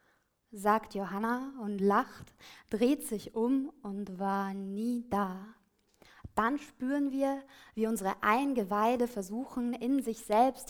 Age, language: 20-39, German